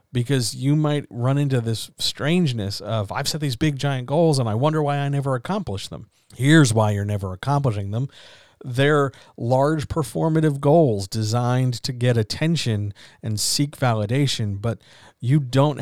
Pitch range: 110-140 Hz